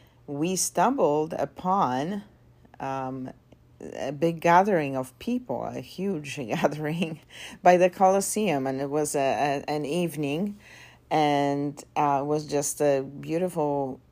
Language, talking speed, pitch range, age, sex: English, 110 wpm, 130-160 Hz, 50-69, female